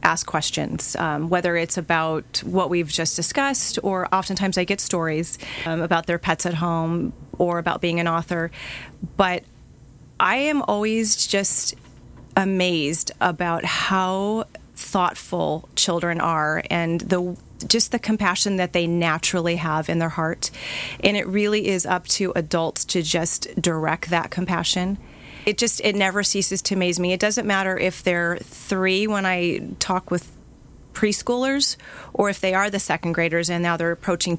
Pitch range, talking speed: 170-200 Hz, 160 wpm